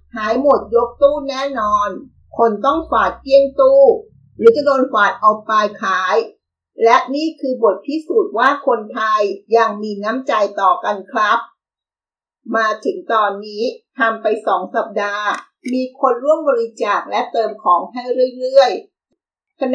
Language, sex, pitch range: Thai, female, 215-300 Hz